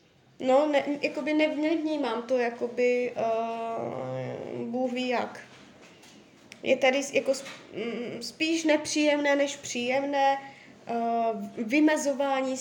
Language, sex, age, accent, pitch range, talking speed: Czech, female, 20-39, native, 240-280 Hz, 65 wpm